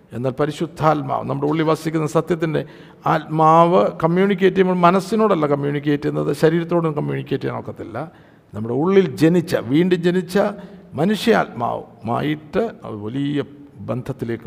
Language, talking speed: Malayalam, 105 wpm